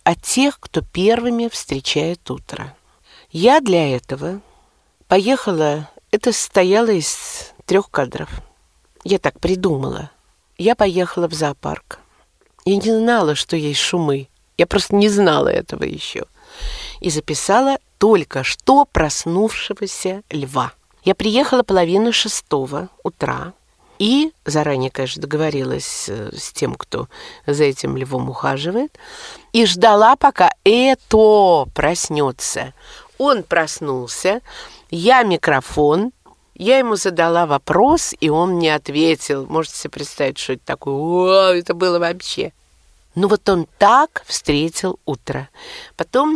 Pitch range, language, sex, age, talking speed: 150-220 Hz, Russian, female, 50-69, 115 wpm